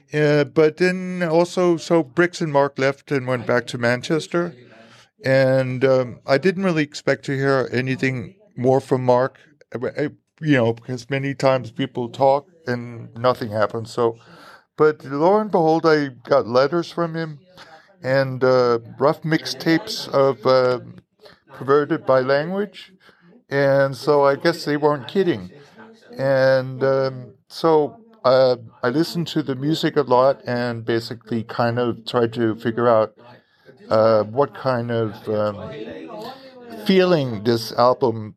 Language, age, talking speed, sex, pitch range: Danish, 50-69, 140 wpm, male, 120-150 Hz